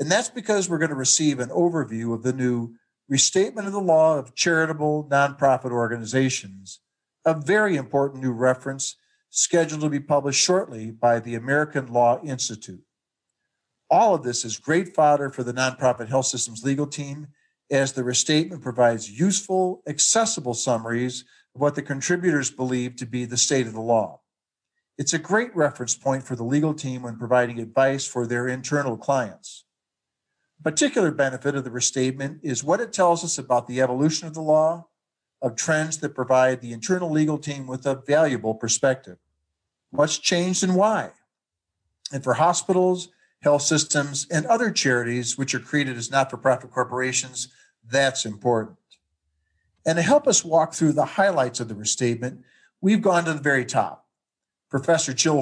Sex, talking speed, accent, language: male, 160 wpm, American, English